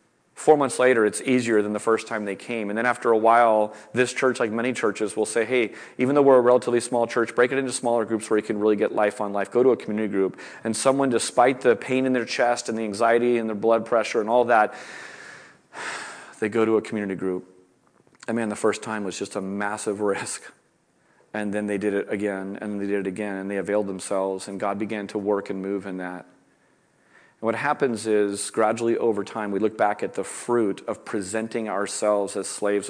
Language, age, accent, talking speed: English, 30-49, American, 225 wpm